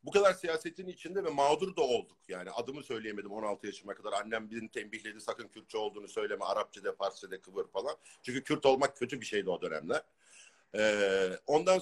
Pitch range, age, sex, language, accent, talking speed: 130-195 Hz, 50-69, male, Turkish, native, 185 wpm